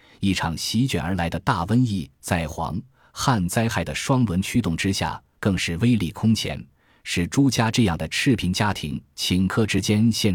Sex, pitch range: male, 85-115 Hz